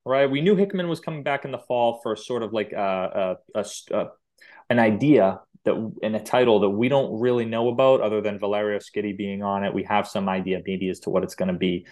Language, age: English, 20-39